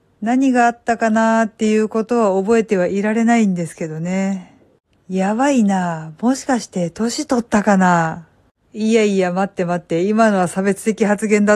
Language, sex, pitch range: Japanese, female, 180-220 Hz